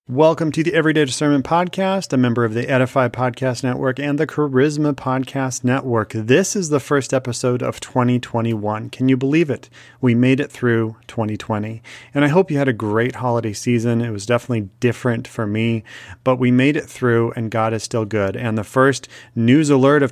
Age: 40-59